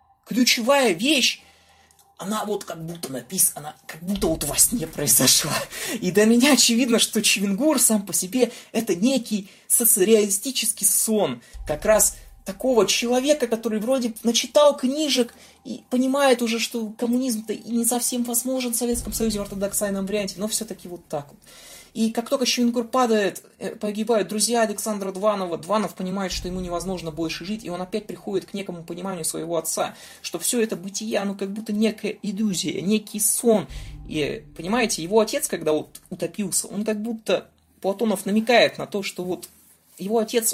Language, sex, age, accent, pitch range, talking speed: Russian, male, 20-39, native, 185-225 Hz, 160 wpm